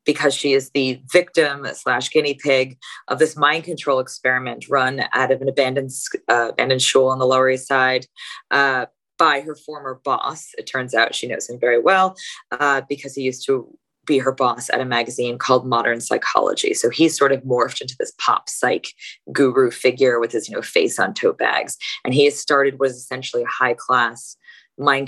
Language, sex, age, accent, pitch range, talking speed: English, female, 20-39, American, 130-150 Hz, 200 wpm